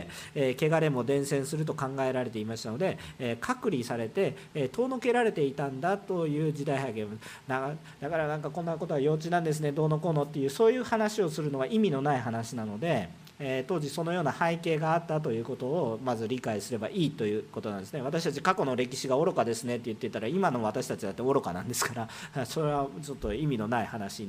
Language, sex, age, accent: Japanese, male, 40-59, native